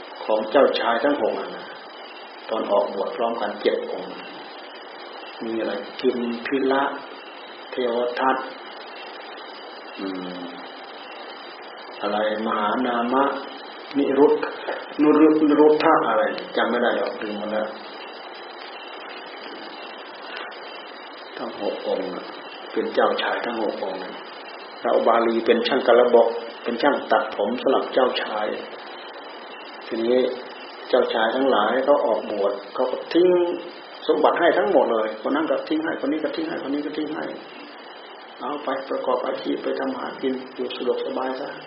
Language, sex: Thai, male